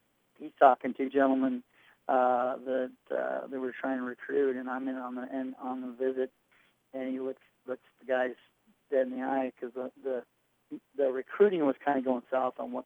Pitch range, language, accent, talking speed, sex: 130-135 Hz, English, American, 200 wpm, male